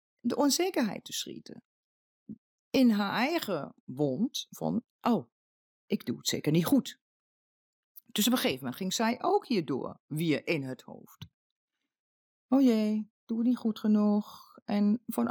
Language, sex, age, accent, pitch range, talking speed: Dutch, female, 40-59, Dutch, 155-250 Hz, 150 wpm